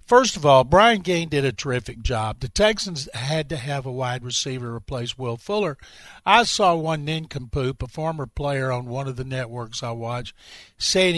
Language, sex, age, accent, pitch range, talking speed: English, male, 50-69, American, 140-180 Hz, 190 wpm